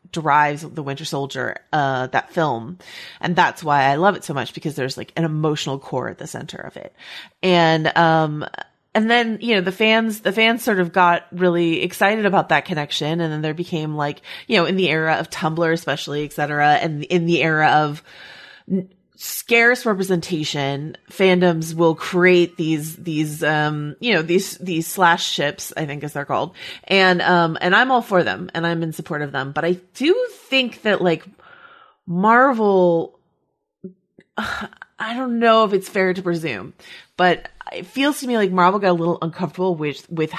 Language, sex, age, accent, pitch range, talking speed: English, female, 30-49, American, 150-190 Hz, 185 wpm